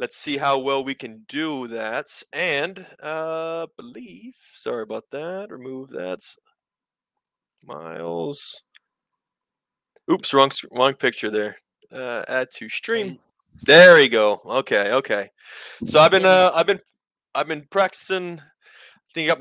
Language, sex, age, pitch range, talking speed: English, male, 20-39, 140-190 Hz, 135 wpm